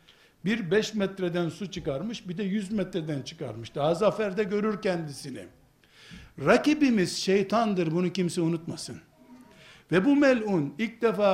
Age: 60-79